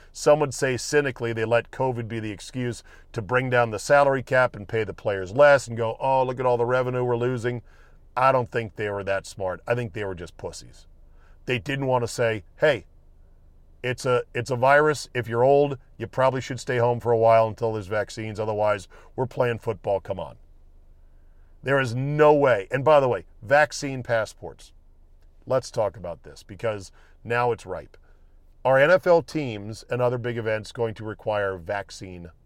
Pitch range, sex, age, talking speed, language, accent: 90-130 Hz, male, 40-59, 190 wpm, English, American